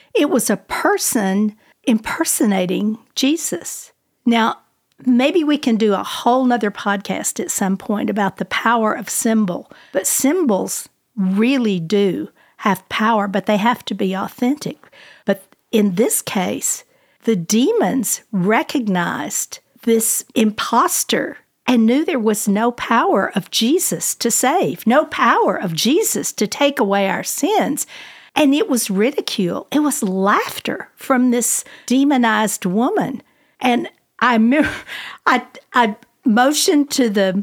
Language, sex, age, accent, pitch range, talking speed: English, female, 50-69, American, 205-260 Hz, 130 wpm